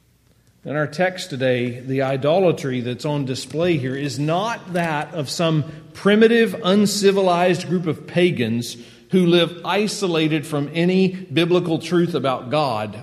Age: 40-59